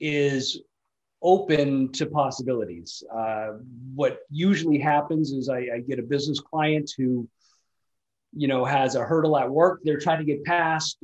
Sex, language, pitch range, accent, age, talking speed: male, English, 130-155 Hz, American, 40-59, 150 wpm